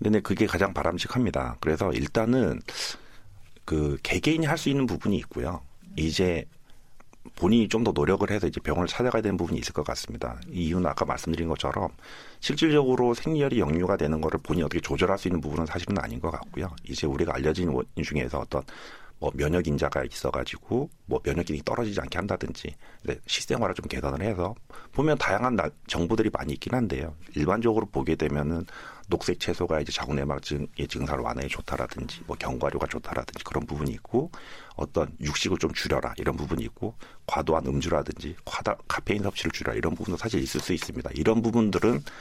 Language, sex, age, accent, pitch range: Korean, male, 40-59, native, 75-115 Hz